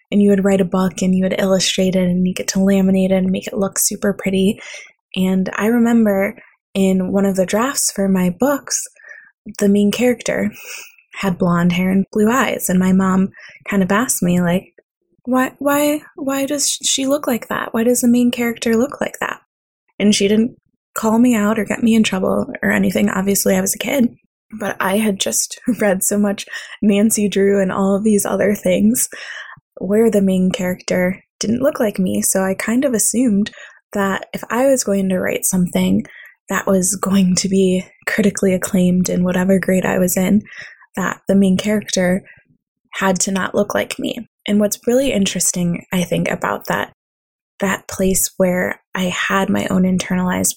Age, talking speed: 20-39, 190 wpm